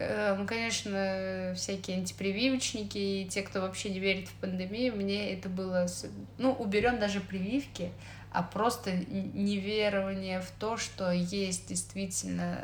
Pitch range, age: 190-285 Hz, 20-39